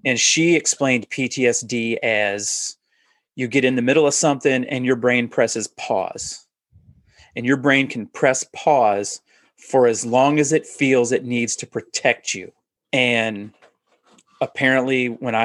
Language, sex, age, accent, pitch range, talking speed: English, male, 30-49, American, 120-145 Hz, 145 wpm